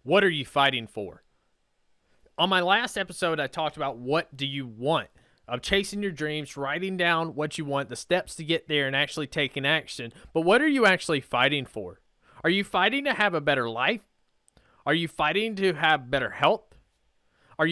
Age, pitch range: 20-39, 140-185 Hz